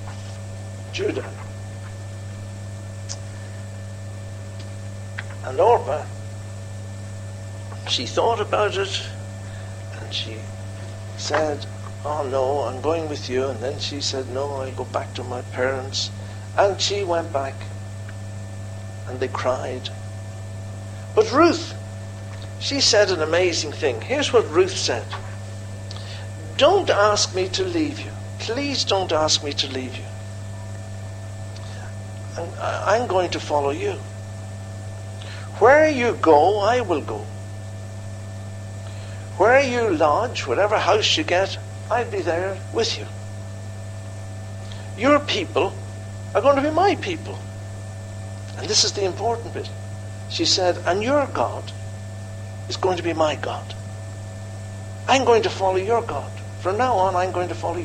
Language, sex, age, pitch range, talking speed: English, male, 60-79, 95-105 Hz, 125 wpm